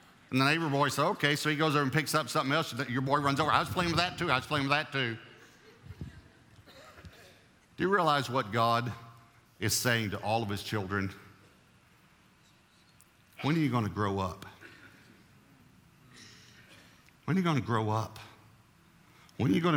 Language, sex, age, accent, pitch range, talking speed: English, male, 50-69, American, 95-120 Hz, 190 wpm